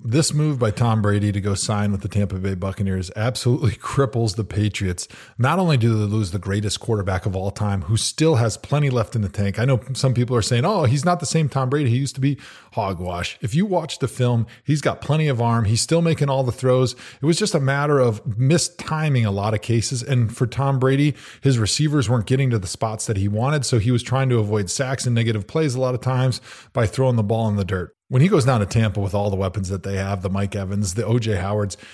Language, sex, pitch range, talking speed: English, male, 105-135 Hz, 255 wpm